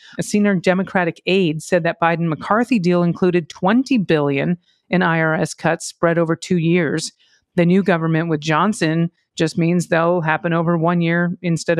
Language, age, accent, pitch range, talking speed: English, 40-59, American, 165-200 Hz, 160 wpm